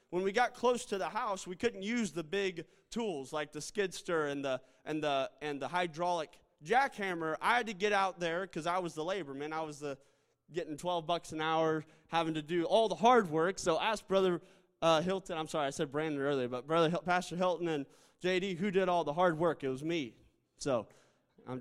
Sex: male